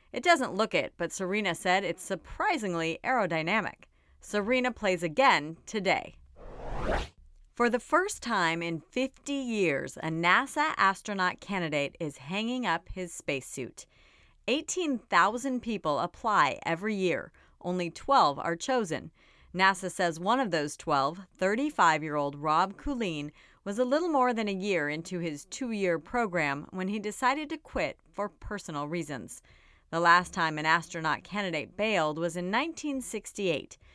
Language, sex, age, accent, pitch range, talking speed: English, female, 40-59, American, 165-230 Hz, 140 wpm